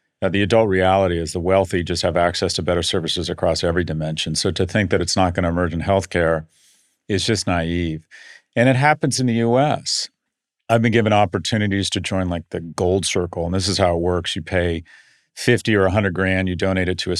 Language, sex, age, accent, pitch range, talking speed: English, male, 40-59, American, 90-105 Hz, 215 wpm